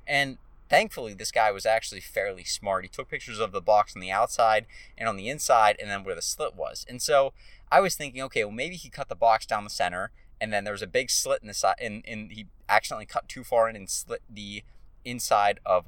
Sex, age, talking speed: male, 20-39, 245 wpm